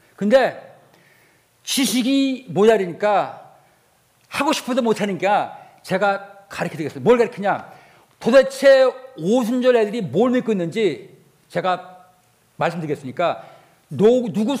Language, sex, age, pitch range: Korean, male, 50-69, 210-300 Hz